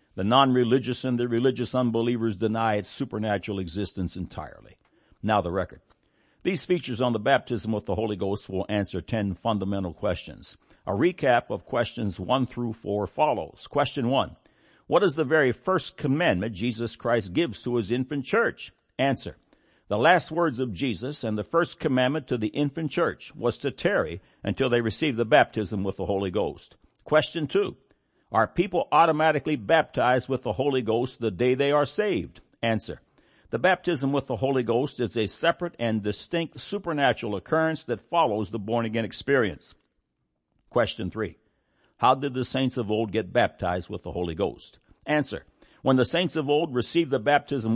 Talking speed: 170 wpm